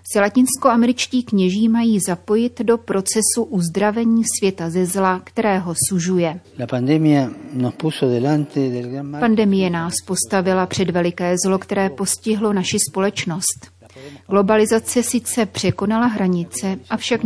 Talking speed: 95 wpm